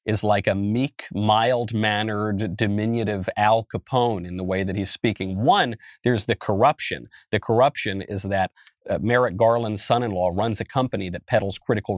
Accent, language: American, English